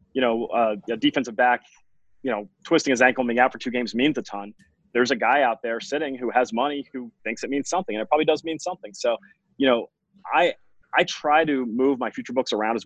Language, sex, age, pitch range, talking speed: English, male, 30-49, 115-145 Hz, 245 wpm